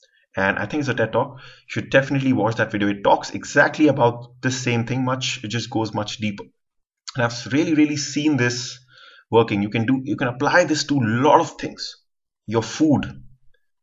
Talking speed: 205 wpm